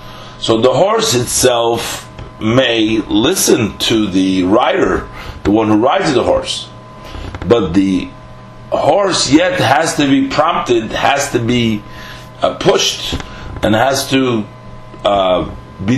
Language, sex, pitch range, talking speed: English, male, 110-155 Hz, 120 wpm